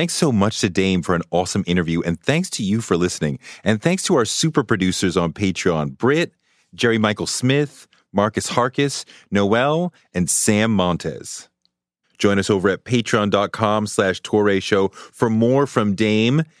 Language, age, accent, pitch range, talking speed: English, 30-49, American, 95-130 Hz, 160 wpm